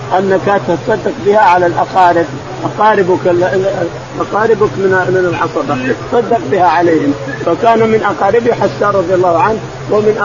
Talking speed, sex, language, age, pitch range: 115 wpm, male, Arabic, 50-69, 175-215 Hz